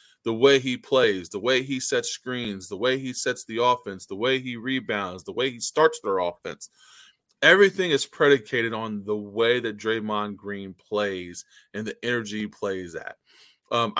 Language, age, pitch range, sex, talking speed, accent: English, 20-39, 110-135 Hz, male, 180 wpm, American